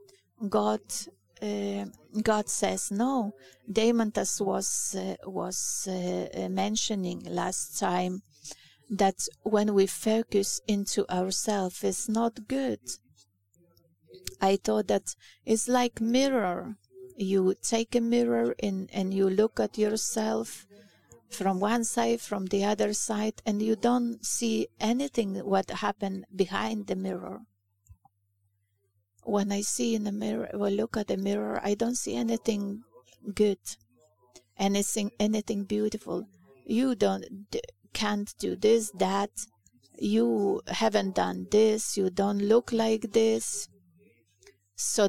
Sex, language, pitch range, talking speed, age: female, English, 190-220 Hz, 120 wpm, 30-49